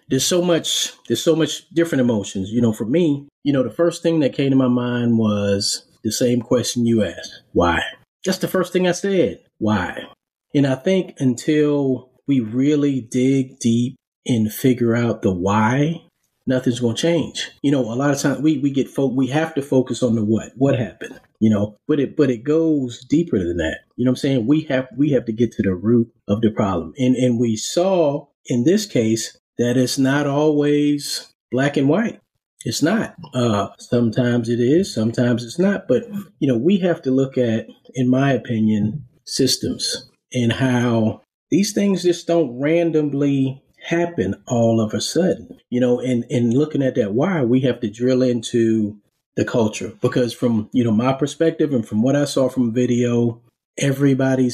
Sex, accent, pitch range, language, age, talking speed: male, American, 115-145 Hz, English, 30-49, 195 wpm